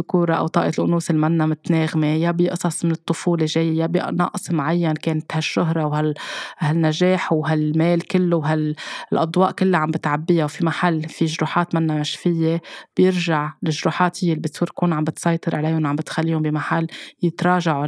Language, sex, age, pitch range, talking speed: Arabic, female, 20-39, 155-175 Hz, 140 wpm